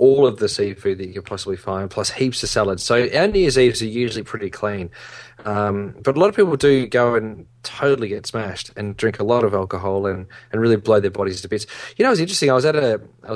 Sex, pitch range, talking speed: male, 105-130 Hz, 260 wpm